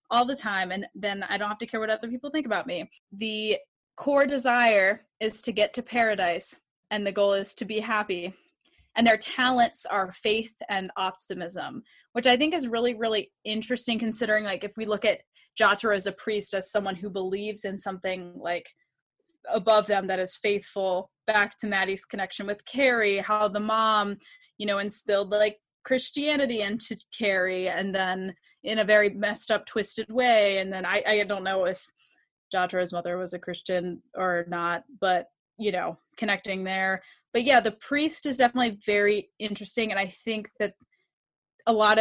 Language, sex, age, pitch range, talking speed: English, female, 10-29, 195-225 Hz, 180 wpm